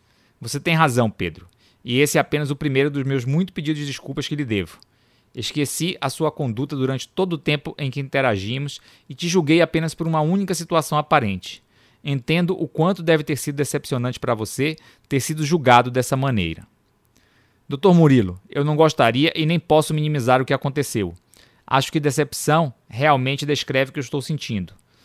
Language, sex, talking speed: Portuguese, male, 180 wpm